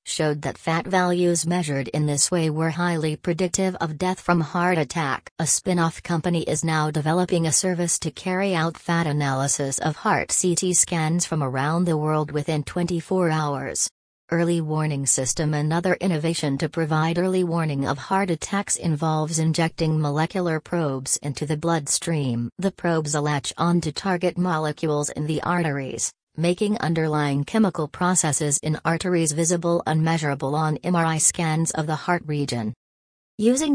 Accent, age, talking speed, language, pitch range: American, 40-59, 150 wpm, English, 150-175 Hz